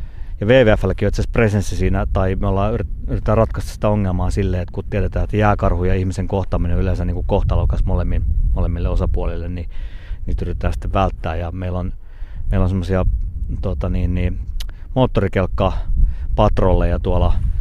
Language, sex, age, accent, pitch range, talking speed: Finnish, male, 30-49, native, 90-100 Hz, 155 wpm